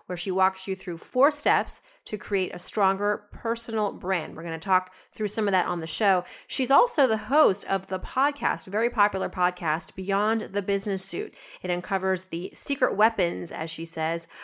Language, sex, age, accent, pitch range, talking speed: English, female, 30-49, American, 180-230 Hz, 195 wpm